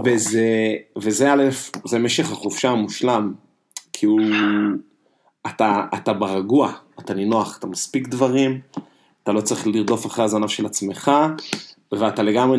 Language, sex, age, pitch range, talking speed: Hebrew, male, 30-49, 110-145 Hz, 130 wpm